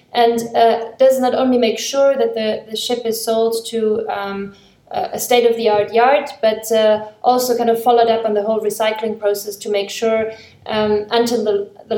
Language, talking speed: English, 200 wpm